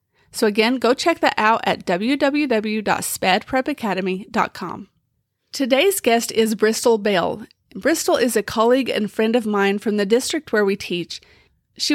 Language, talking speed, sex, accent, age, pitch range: English, 140 wpm, female, American, 30-49, 205-245 Hz